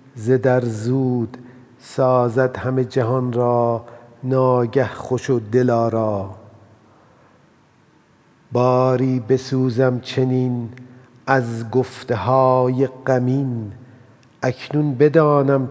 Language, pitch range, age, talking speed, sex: Persian, 115-130 Hz, 50-69, 75 wpm, male